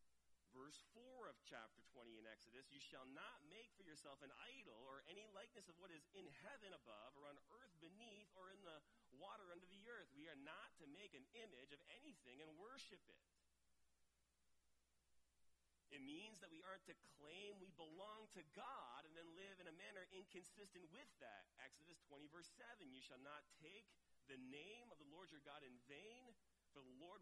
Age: 40-59